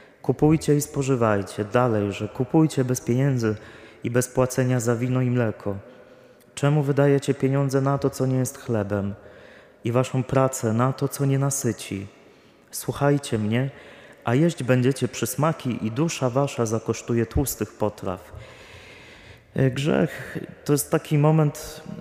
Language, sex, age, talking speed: Polish, male, 30-49, 135 wpm